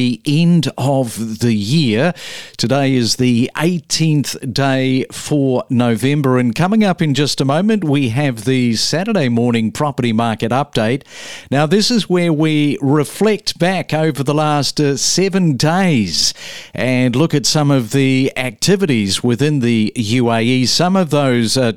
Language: English